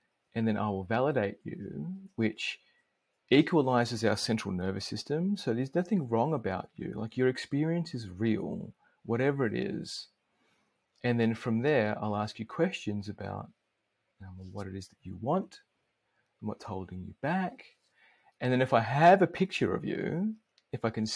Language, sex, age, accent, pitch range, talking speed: English, male, 40-59, Australian, 100-130 Hz, 165 wpm